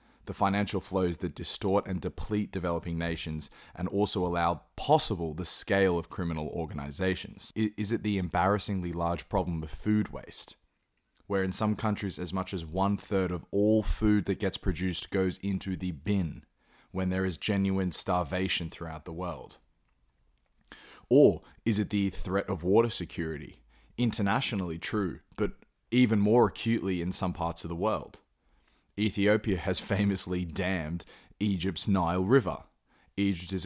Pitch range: 85-100 Hz